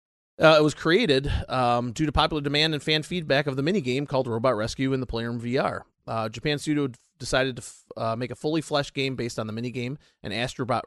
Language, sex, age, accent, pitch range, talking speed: English, male, 30-49, American, 115-150 Hz, 215 wpm